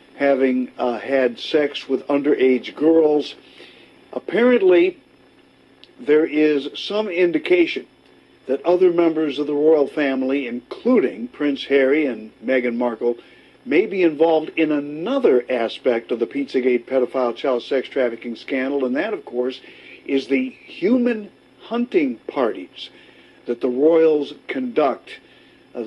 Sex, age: male, 60-79